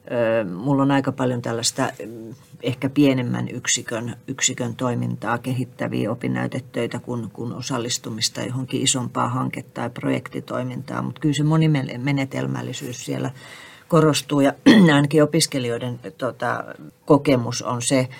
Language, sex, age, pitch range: Finnish, female, 40-59, 115-135 Hz